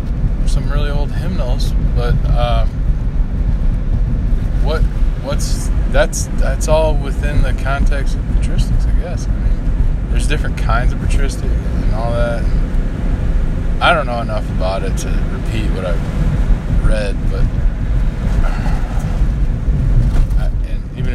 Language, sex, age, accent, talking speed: English, male, 20-39, American, 120 wpm